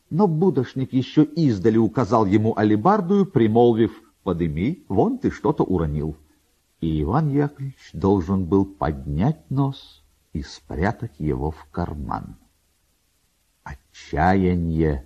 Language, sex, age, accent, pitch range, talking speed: Russian, male, 50-69, native, 80-125 Hz, 105 wpm